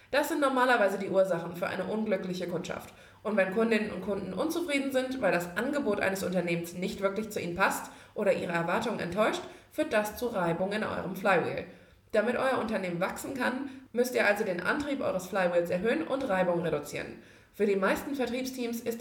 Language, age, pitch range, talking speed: German, 20-39, 180-245 Hz, 185 wpm